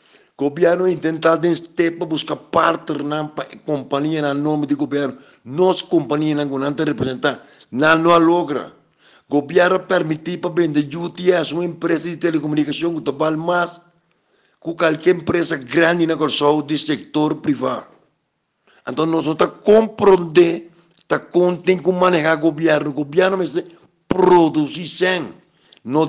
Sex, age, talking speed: male, 60-79, 135 wpm